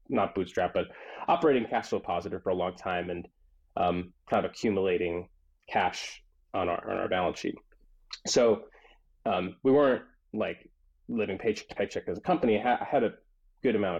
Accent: American